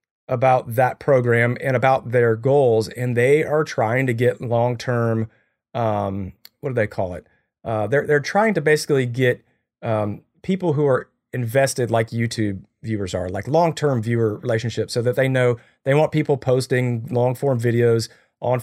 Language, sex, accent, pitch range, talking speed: English, male, American, 115-140 Hz, 170 wpm